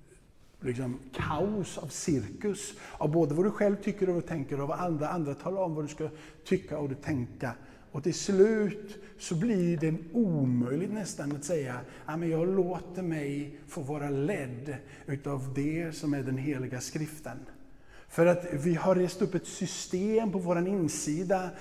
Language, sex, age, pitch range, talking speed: Swedish, male, 50-69, 140-185 Hz, 165 wpm